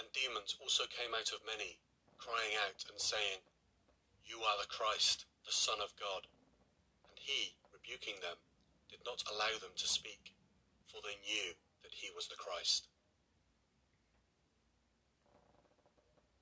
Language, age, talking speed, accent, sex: English, 40-59, 135 wpm, British, male